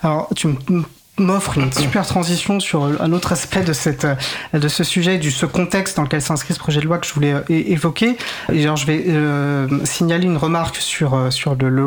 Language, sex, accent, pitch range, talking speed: French, male, French, 140-175 Hz, 205 wpm